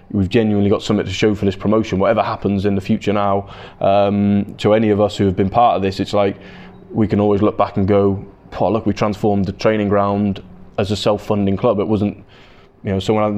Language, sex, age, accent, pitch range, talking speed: English, male, 20-39, British, 100-115 Hz, 230 wpm